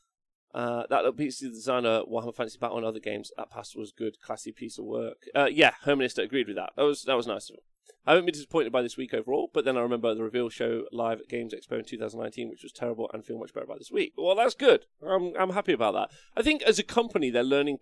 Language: English